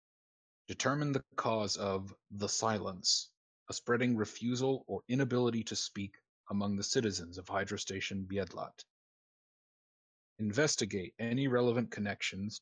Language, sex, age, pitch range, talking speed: English, male, 30-49, 100-120 Hz, 110 wpm